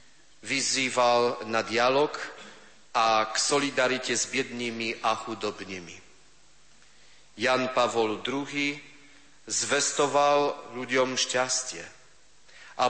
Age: 40-59